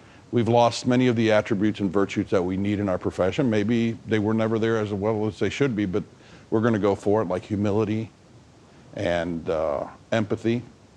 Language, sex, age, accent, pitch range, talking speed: English, male, 50-69, American, 105-125 Hz, 195 wpm